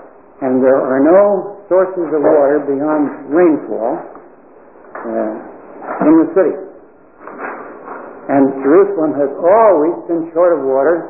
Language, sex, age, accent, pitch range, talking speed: English, male, 60-79, American, 140-180 Hz, 115 wpm